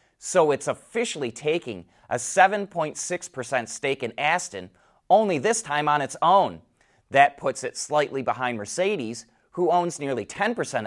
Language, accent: English, American